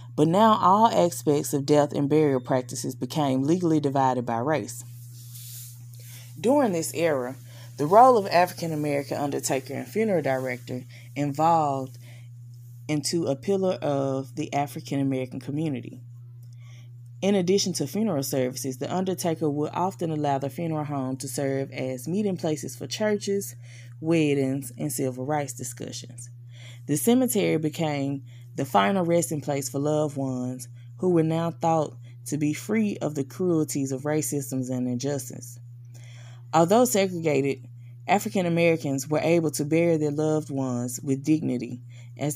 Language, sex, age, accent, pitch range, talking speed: English, female, 20-39, American, 120-160 Hz, 135 wpm